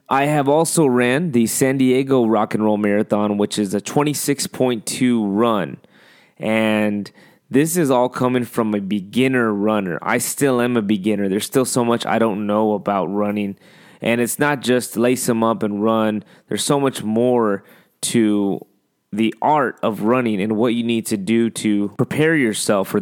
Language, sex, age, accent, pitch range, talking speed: English, male, 20-39, American, 110-130 Hz, 175 wpm